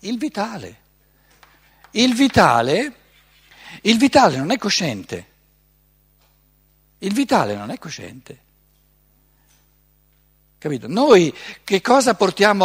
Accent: native